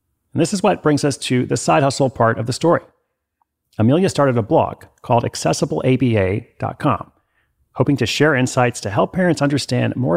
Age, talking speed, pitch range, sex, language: 40-59, 170 wpm, 110-145 Hz, male, English